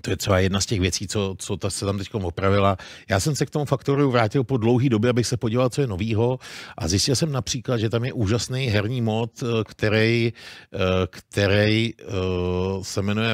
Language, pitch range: Czech, 105-140 Hz